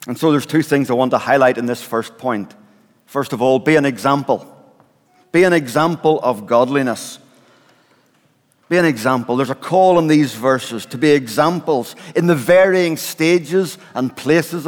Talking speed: 170 wpm